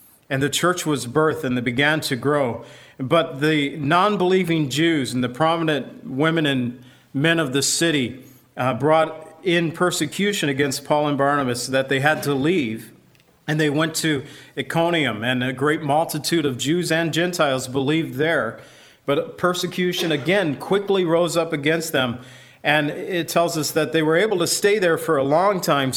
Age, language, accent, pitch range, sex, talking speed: 40-59, English, American, 135-160 Hz, male, 170 wpm